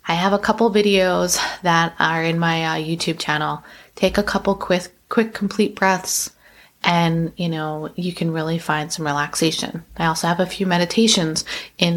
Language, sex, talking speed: English, female, 175 wpm